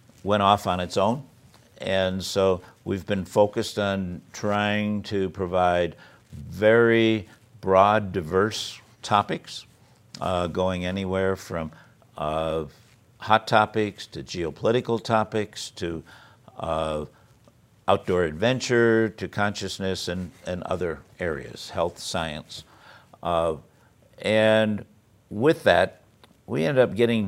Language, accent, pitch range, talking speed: English, American, 90-110 Hz, 105 wpm